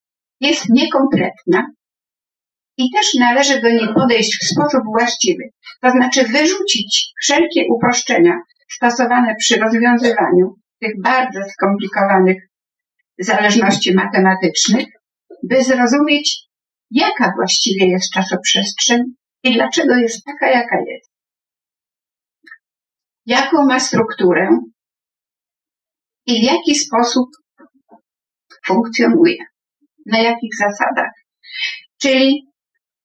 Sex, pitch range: female, 215-290 Hz